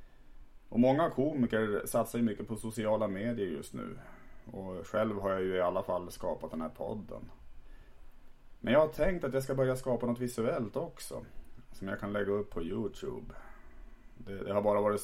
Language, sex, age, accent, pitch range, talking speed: Swedish, male, 30-49, Norwegian, 90-115 Hz, 190 wpm